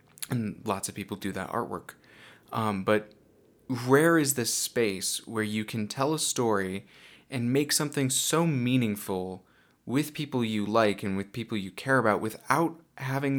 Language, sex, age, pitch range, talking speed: English, male, 20-39, 100-125 Hz, 160 wpm